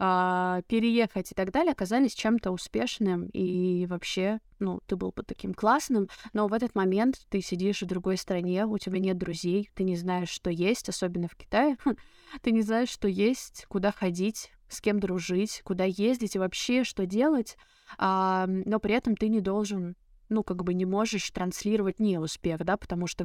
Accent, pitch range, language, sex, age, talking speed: native, 180-215 Hz, Russian, female, 20-39, 180 wpm